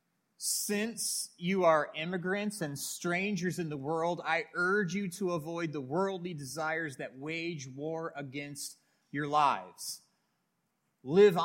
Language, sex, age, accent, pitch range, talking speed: English, male, 30-49, American, 145-190 Hz, 125 wpm